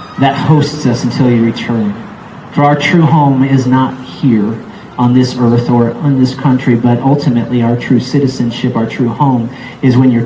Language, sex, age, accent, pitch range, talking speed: English, male, 40-59, American, 120-150 Hz, 180 wpm